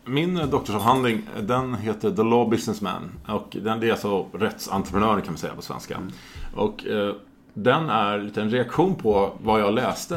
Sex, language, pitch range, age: male, Swedish, 90-125 Hz, 30-49